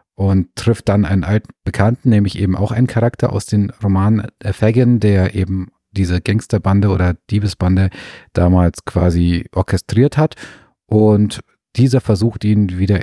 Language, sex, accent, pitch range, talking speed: German, male, German, 95-110 Hz, 140 wpm